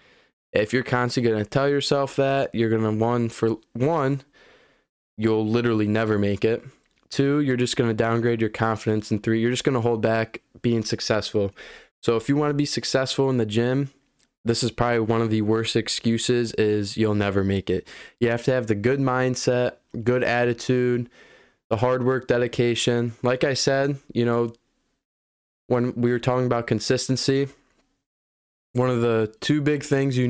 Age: 20-39